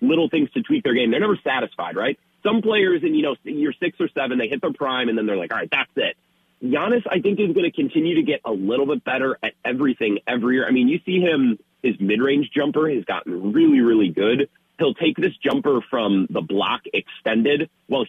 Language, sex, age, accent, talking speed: English, male, 30-49, American, 230 wpm